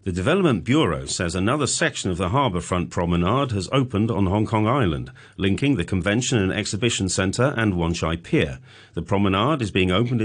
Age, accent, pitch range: 40-59, British, 90-115 Hz